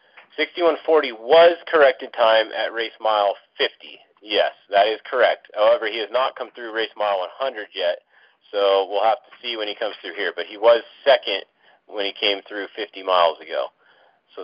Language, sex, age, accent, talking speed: English, male, 40-59, American, 185 wpm